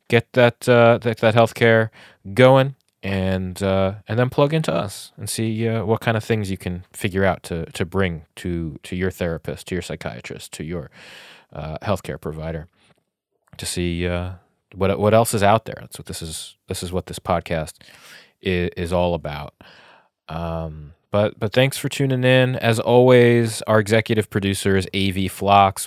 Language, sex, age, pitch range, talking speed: English, male, 30-49, 85-115 Hz, 175 wpm